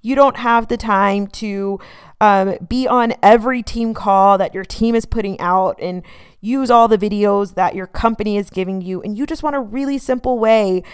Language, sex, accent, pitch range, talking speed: English, female, American, 200-240 Hz, 205 wpm